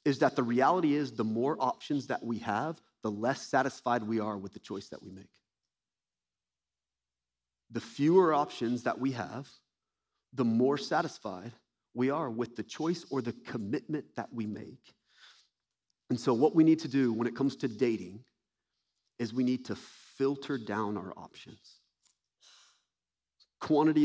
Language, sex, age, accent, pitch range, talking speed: English, male, 30-49, American, 105-135 Hz, 155 wpm